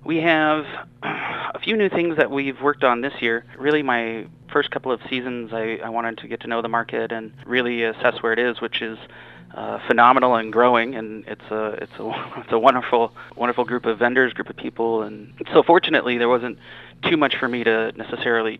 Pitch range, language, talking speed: 115-130 Hz, English, 210 wpm